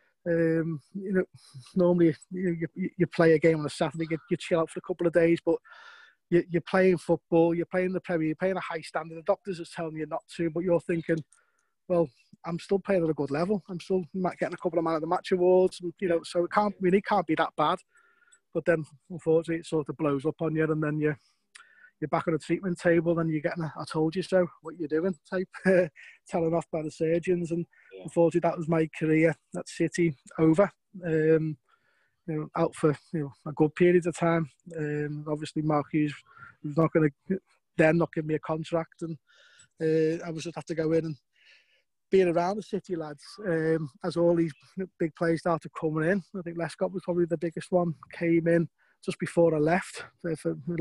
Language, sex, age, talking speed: English, male, 20-39, 225 wpm